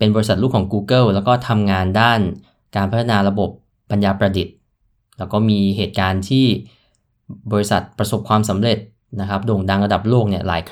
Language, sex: Thai, male